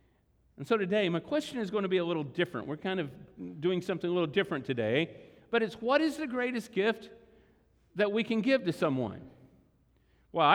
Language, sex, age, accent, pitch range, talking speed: English, male, 50-69, American, 135-210 Hz, 200 wpm